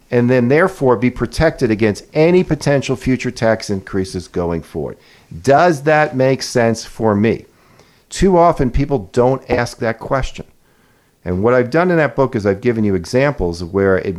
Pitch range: 95-135 Hz